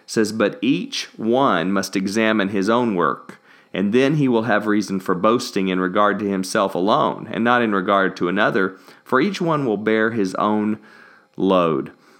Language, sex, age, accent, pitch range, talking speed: English, male, 40-59, American, 105-135 Hz, 175 wpm